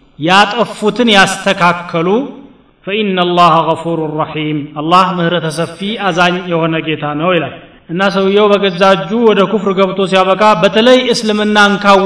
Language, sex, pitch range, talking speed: Amharic, male, 175-200 Hz, 120 wpm